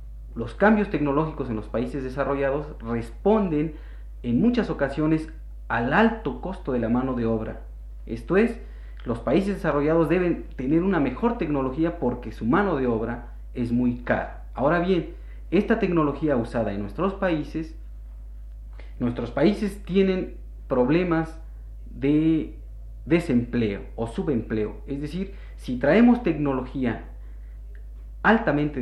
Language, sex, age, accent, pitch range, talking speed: Spanish, male, 40-59, Mexican, 110-160 Hz, 125 wpm